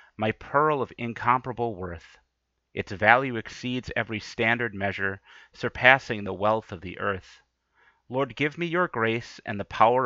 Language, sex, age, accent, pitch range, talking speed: English, male, 30-49, American, 100-125 Hz, 150 wpm